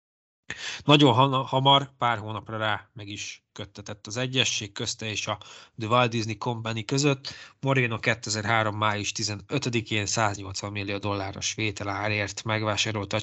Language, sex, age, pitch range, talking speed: Hungarian, male, 20-39, 105-130 Hz, 125 wpm